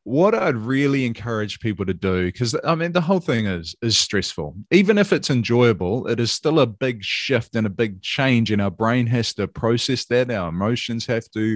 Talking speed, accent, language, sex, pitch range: 215 wpm, Australian, English, male, 100-130 Hz